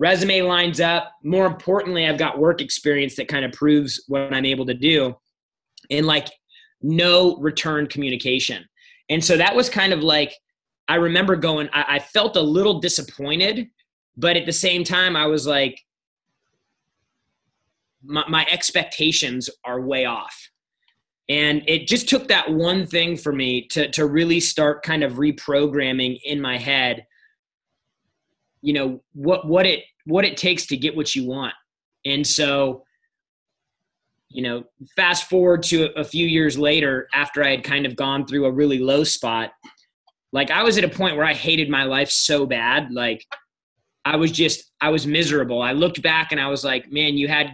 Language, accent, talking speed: English, American, 170 wpm